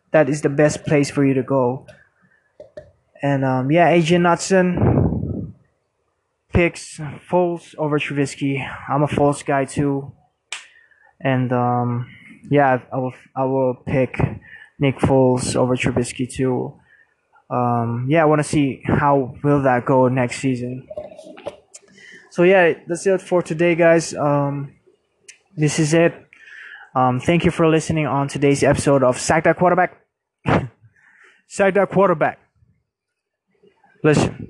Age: 20-39